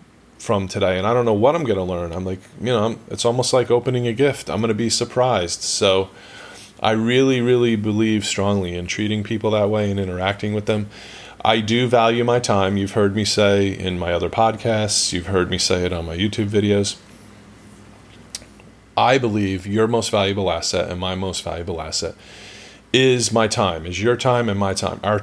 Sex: male